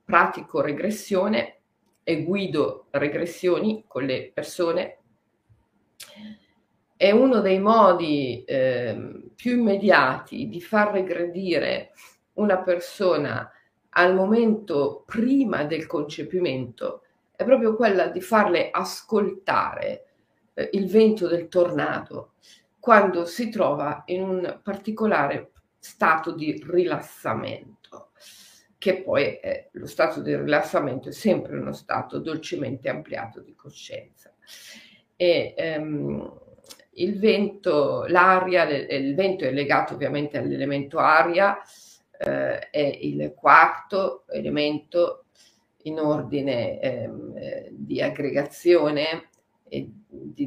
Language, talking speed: Italian, 100 wpm